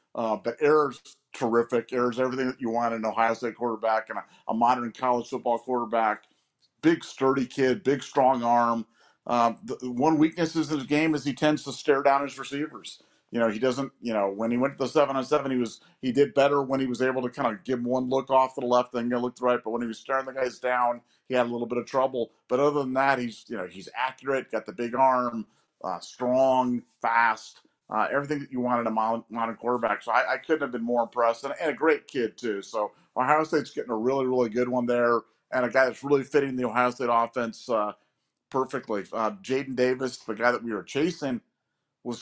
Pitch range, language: 115-135 Hz, English